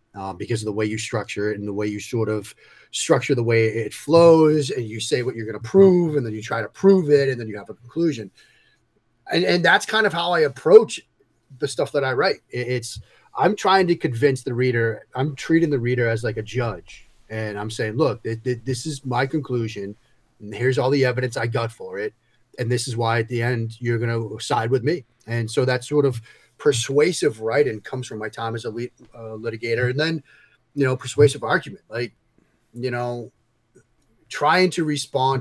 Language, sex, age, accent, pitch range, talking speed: English, male, 30-49, American, 115-140 Hz, 210 wpm